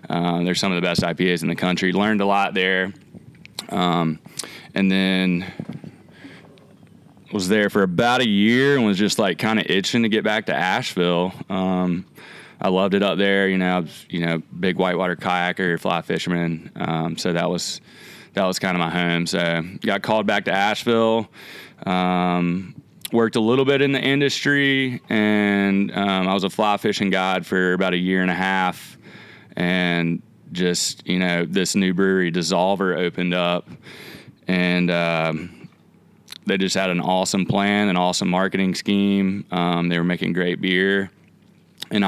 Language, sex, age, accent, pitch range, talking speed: English, male, 20-39, American, 90-100 Hz, 170 wpm